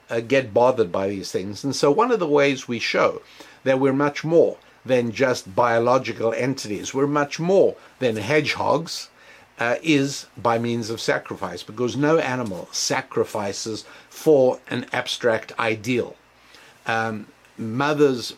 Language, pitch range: English, 115-145 Hz